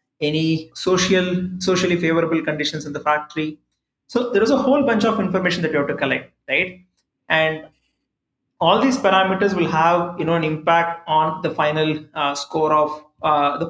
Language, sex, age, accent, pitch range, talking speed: English, male, 30-49, Indian, 155-180 Hz, 175 wpm